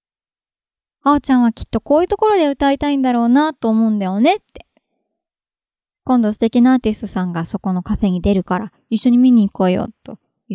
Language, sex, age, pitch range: Japanese, male, 20-39, 205-260 Hz